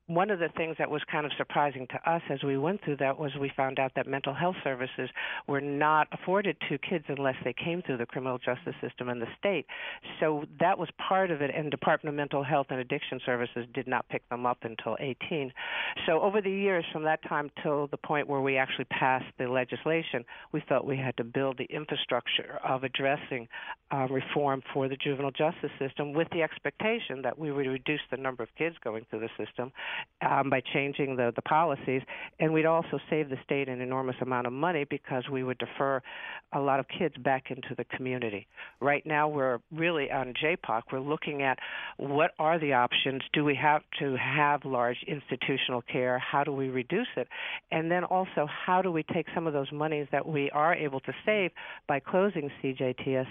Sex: female